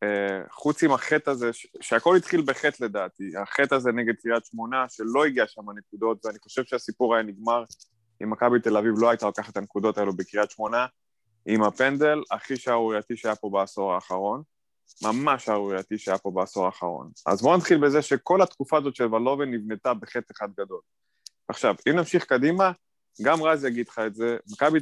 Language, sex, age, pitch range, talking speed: Hebrew, male, 20-39, 105-135 Hz, 155 wpm